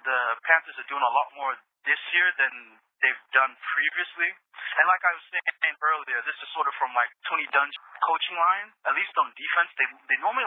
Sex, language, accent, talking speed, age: male, English, American, 205 wpm, 30-49